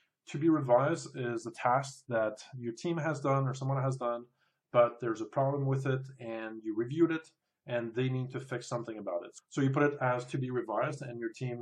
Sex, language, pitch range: male, English, 115-140 Hz